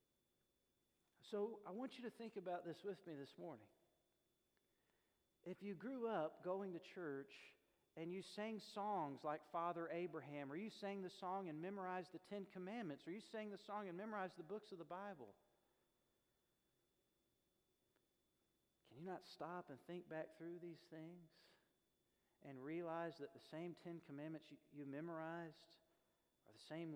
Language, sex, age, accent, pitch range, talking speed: English, male, 40-59, American, 155-200 Hz, 160 wpm